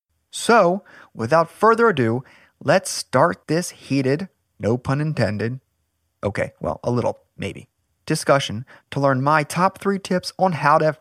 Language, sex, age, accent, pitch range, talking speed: English, male, 30-49, American, 115-180 Hz, 145 wpm